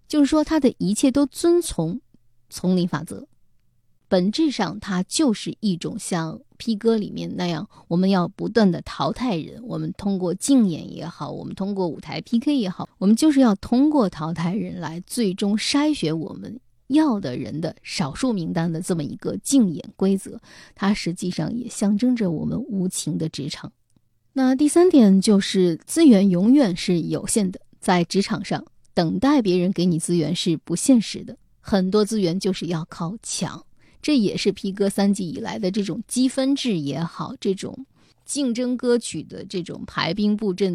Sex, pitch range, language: female, 175-245 Hz, Chinese